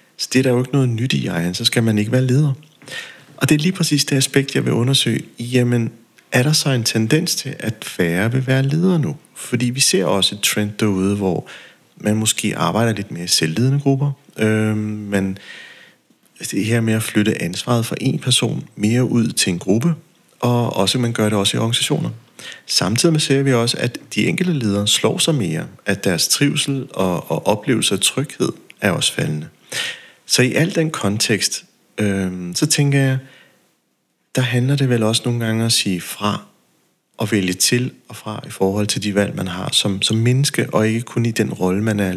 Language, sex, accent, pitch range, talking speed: Danish, male, native, 105-135 Hz, 205 wpm